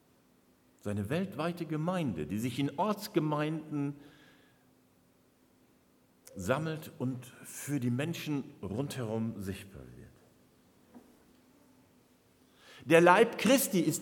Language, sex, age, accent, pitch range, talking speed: German, male, 60-79, German, 105-170 Hz, 85 wpm